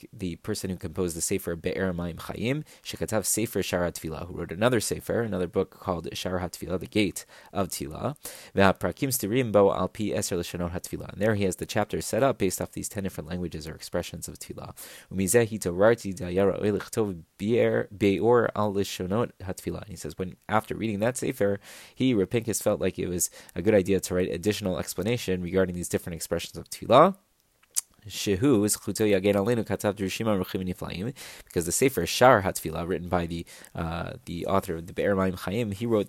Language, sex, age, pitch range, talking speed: English, male, 20-39, 90-105 Hz, 140 wpm